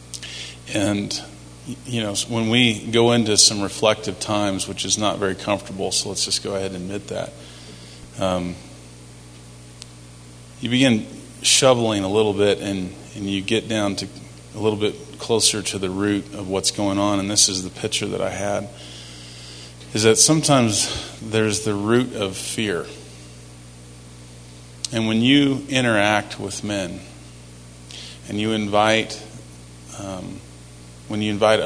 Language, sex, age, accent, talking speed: English, male, 30-49, American, 145 wpm